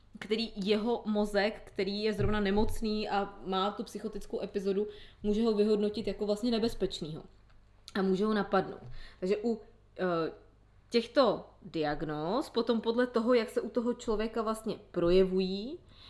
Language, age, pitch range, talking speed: Czech, 20-39, 195-230 Hz, 140 wpm